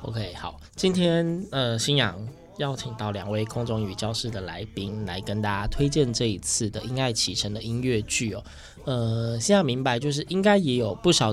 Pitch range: 110-140 Hz